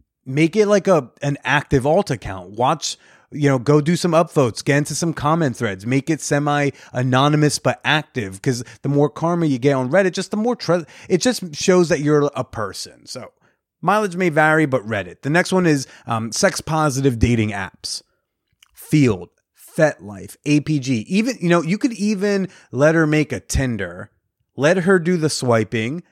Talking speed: 185 wpm